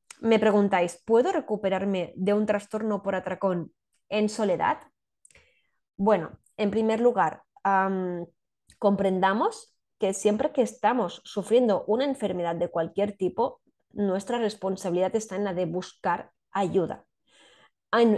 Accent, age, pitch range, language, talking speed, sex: Spanish, 20-39, 180-220 Hz, Spanish, 120 wpm, female